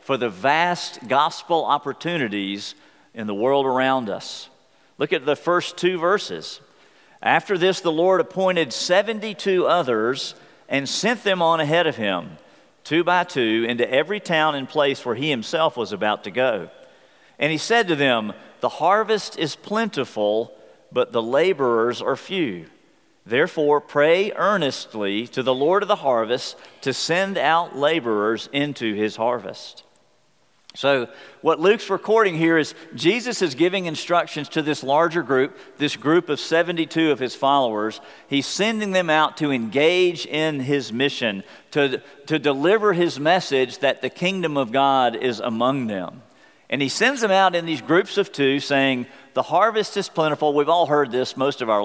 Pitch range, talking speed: 130-175 Hz, 160 wpm